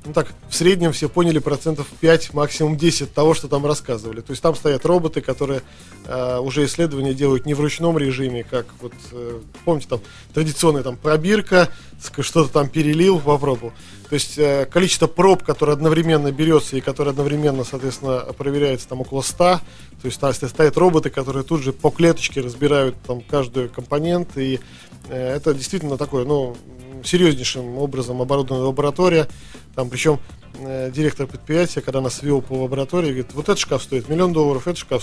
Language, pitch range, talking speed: Russian, 130-165 Hz, 170 wpm